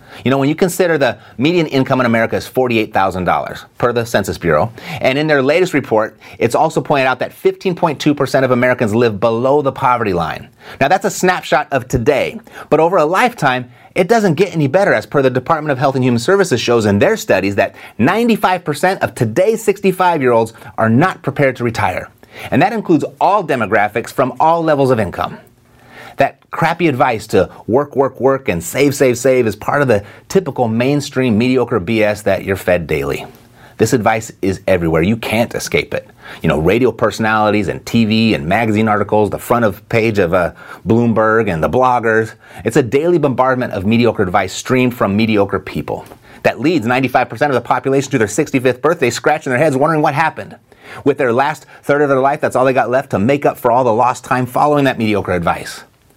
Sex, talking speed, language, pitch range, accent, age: male, 195 wpm, English, 110-150 Hz, American, 30-49